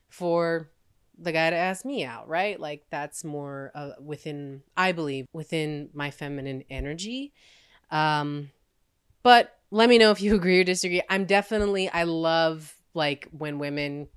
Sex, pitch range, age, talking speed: female, 145-180 Hz, 20-39, 155 wpm